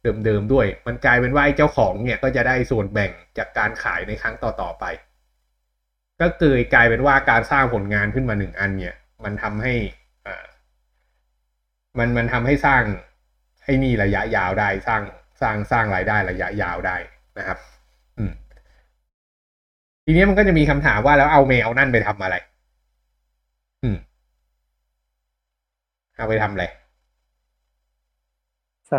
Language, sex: Thai, male